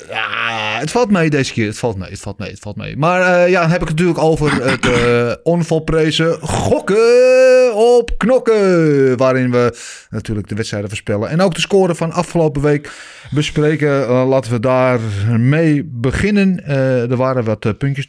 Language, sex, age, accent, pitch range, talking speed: Dutch, male, 30-49, Dutch, 115-160 Hz, 180 wpm